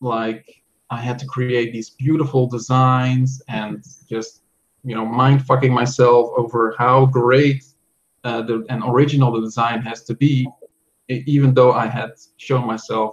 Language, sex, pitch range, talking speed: English, male, 115-135 Hz, 150 wpm